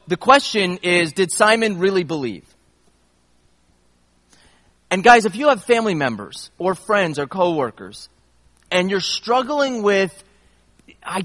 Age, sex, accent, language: 30-49, male, American, English